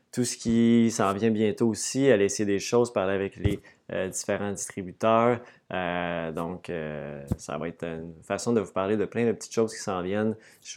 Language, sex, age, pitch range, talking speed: French, male, 20-39, 100-115 Hz, 205 wpm